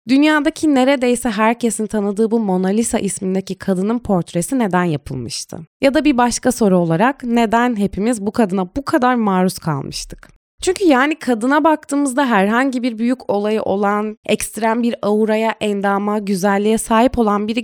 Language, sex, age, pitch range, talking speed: Turkish, female, 20-39, 190-275 Hz, 145 wpm